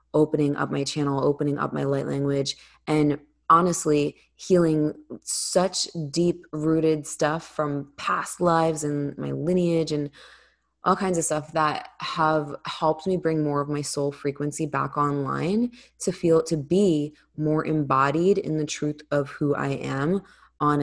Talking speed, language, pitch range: 155 wpm, English, 140-155 Hz